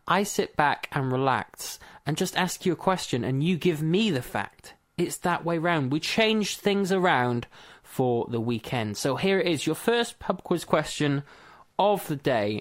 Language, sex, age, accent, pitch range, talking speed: English, male, 20-39, British, 130-175 Hz, 190 wpm